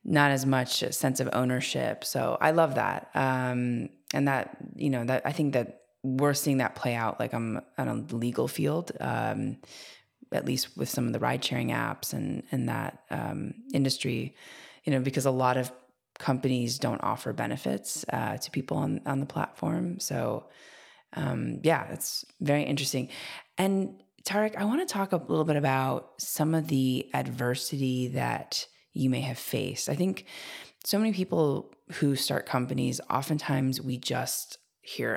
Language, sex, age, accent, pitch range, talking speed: English, female, 20-39, American, 125-150 Hz, 170 wpm